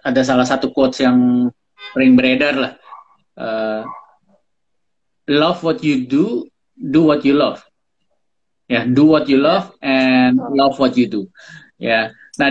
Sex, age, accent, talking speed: male, 20-39, native, 150 wpm